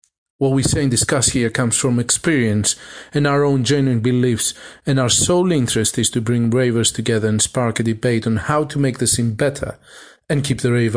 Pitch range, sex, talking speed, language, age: 115-145 Hz, male, 210 wpm, English, 40-59